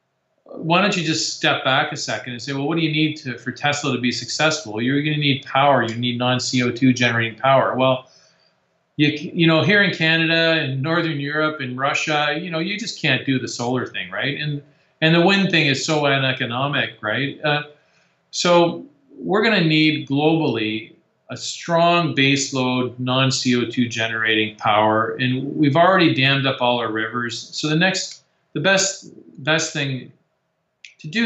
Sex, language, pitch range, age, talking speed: male, English, 120-155 Hz, 40-59, 180 wpm